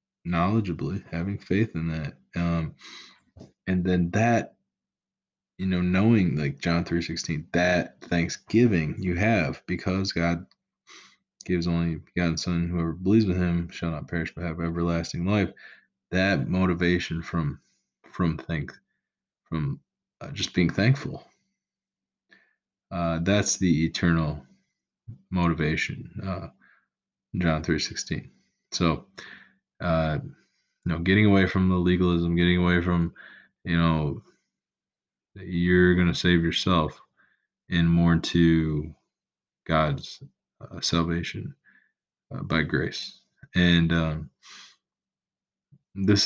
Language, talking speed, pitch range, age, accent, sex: English, 115 wpm, 85-95 Hz, 20-39, American, male